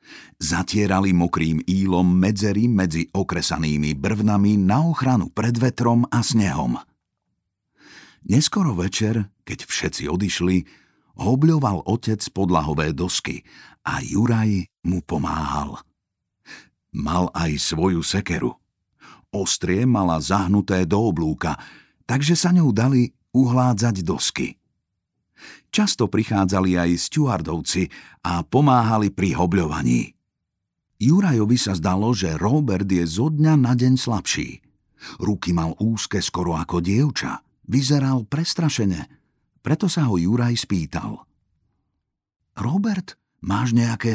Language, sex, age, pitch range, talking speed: Slovak, male, 50-69, 90-125 Hz, 105 wpm